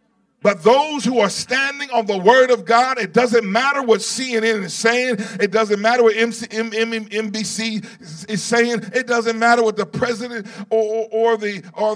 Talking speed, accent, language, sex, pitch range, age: 175 wpm, American, English, male, 210-235 Hz, 40-59